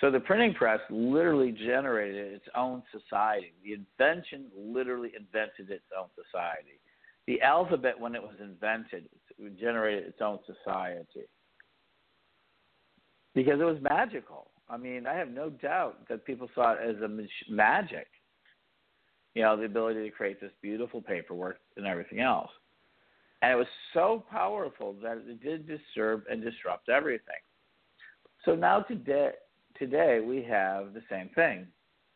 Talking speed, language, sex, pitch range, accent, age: 140 wpm, English, male, 105-135 Hz, American, 50-69